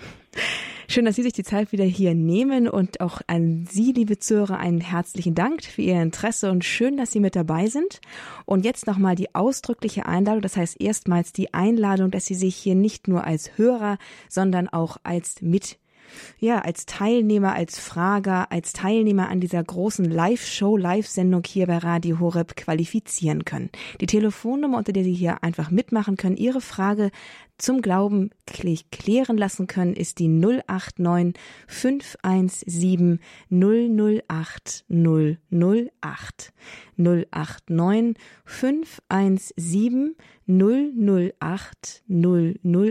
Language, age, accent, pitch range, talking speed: German, 20-39, German, 175-215 Hz, 130 wpm